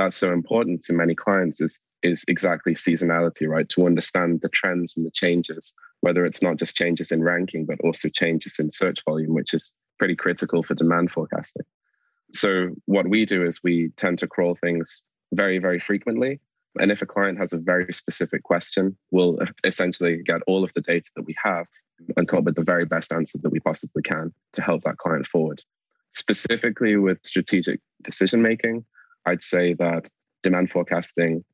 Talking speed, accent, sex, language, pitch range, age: 185 wpm, British, male, English, 85-90 Hz, 20-39